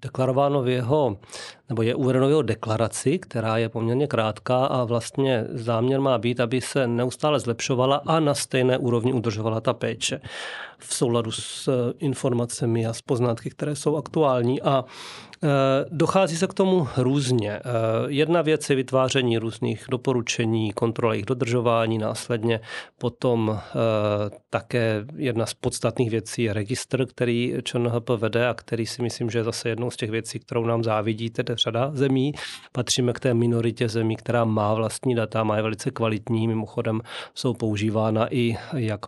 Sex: male